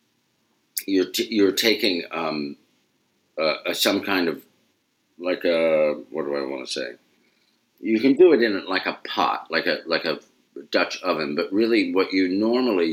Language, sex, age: English, male, 50-69